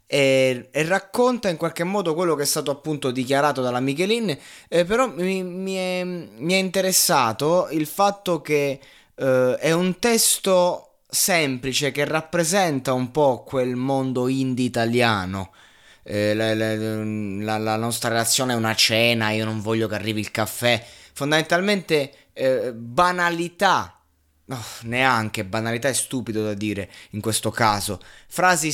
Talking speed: 135 wpm